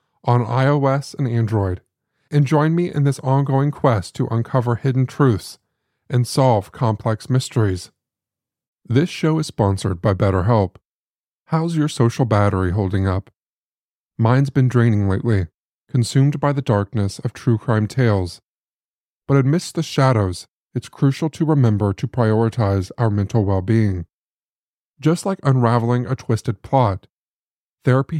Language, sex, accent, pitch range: English, male, American, 105-135 Hz